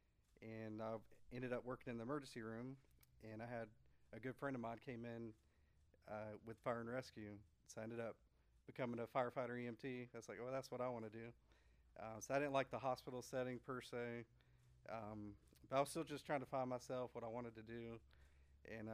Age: 40-59